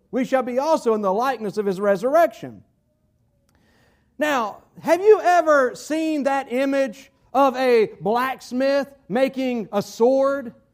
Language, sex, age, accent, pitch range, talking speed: English, male, 40-59, American, 230-280 Hz, 130 wpm